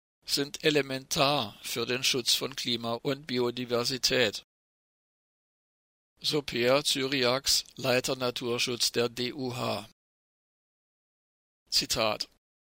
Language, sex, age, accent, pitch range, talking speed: German, male, 50-69, German, 120-140 Hz, 75 wpm